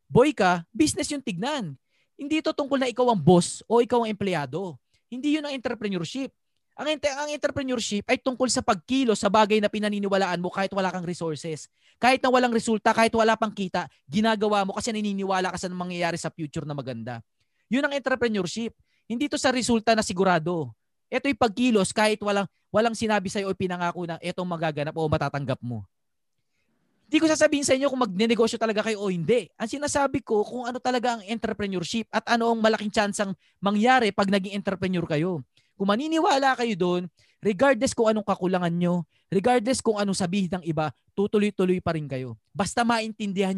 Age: 20-39